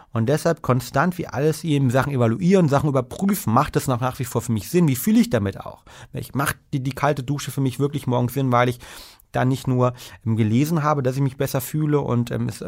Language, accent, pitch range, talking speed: German, German, 120-155 Hz, 235 wpm